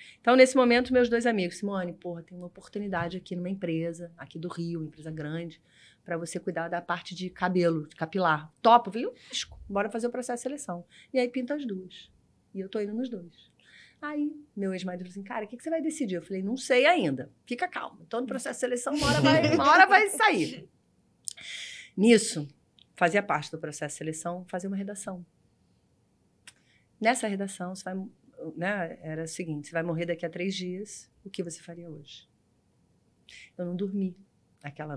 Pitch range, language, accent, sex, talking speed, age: 165-220 Hz, Portuguese, Brazilian, female, 190 wpm, 30-49